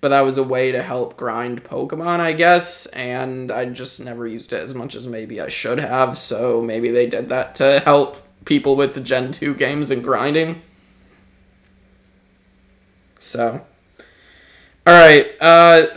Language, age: English, 20-39